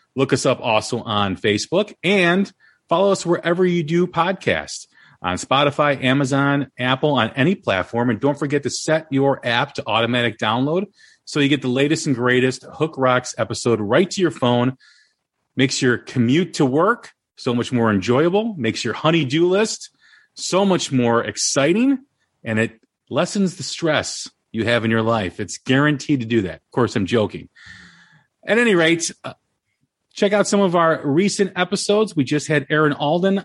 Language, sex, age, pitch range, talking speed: English, male, 40-59, 120-170 Hz, 175 wpm